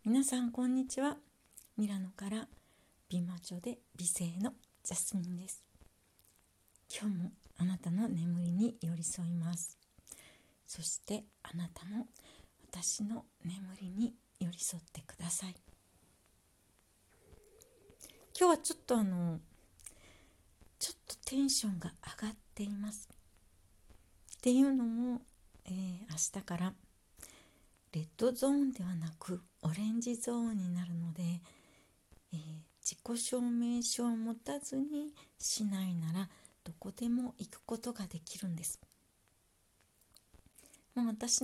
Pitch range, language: 170-245 Hz, Japanese